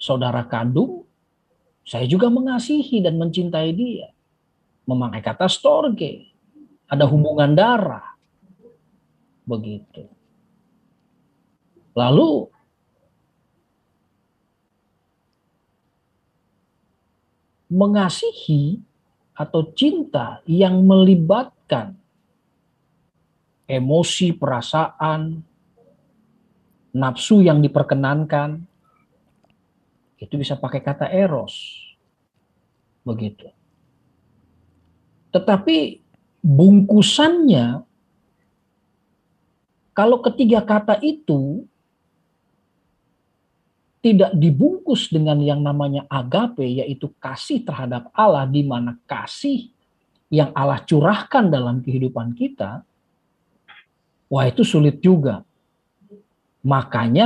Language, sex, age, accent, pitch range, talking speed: Indonesian, male, 50-69, native, 130-205 Hz, 65 wpm